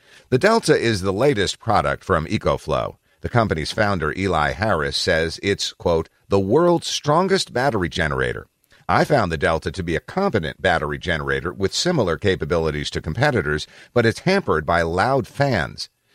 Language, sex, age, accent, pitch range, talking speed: English, male, 50-69, American, 85-120 Hz, 155 wpm